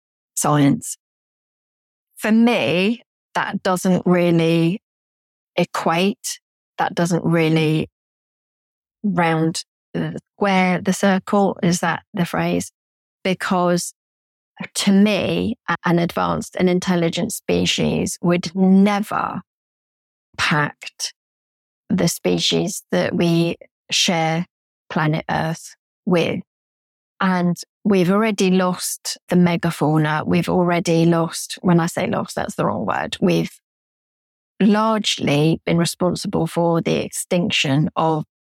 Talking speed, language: 100 wpm, English